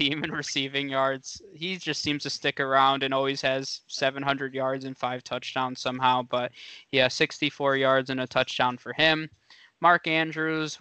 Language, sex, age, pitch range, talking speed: English, male, 20-39, 130-145 Hz, 165 wpm